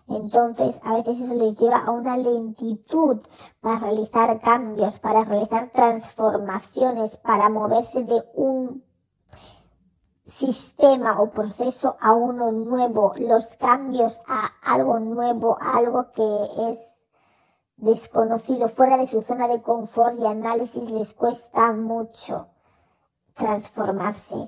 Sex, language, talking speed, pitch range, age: male, Spanish, 115 wpm, 210-240 Hz, 40-59